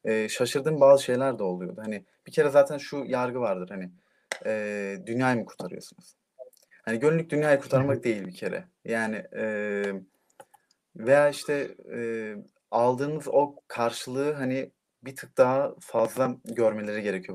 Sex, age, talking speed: male, 30-49, 140 wpm